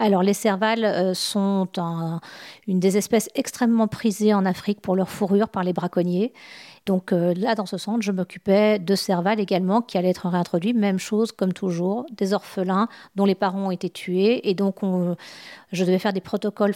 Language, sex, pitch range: French, female, 180-210 Hz